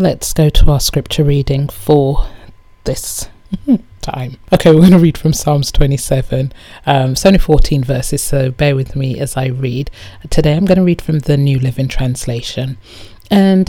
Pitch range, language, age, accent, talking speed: 105-165 Hz, English, 30-49, British, 175 wpm